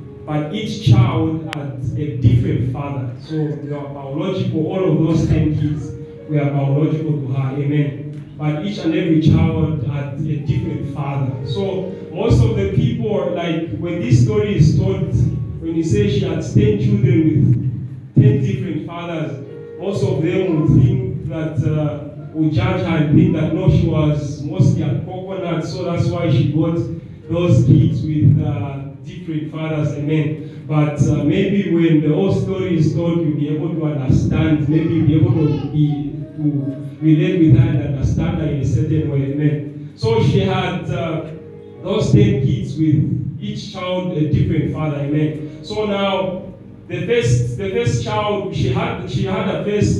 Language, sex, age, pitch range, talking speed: English, male, 30-49, 140-165 Hz, 175 wpm